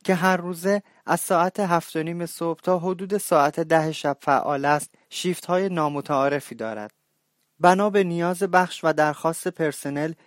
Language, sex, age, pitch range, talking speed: Persian, male, 30-49, 145-170 Hz, 145 wpm